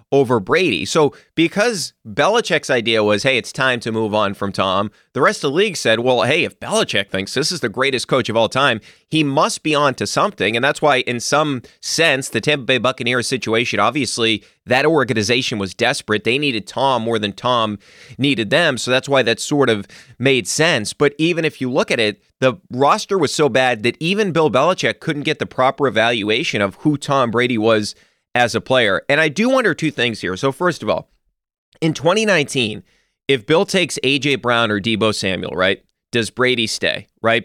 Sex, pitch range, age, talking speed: male, 115-145 Hz, 30-49, 205 wpm